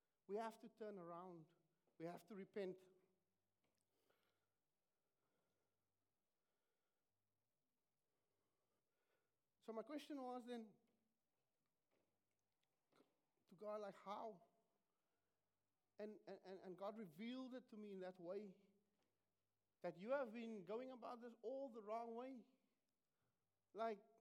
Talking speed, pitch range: 100 wpm, 185-230 Hz